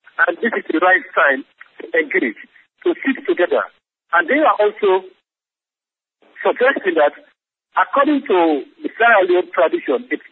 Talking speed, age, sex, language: 135 wpm, 50-69, male, English